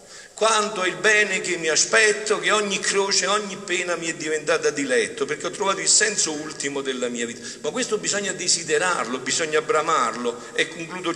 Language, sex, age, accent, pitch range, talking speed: Italian, male, 50-69, native, 130-200 Hz, 175 wpm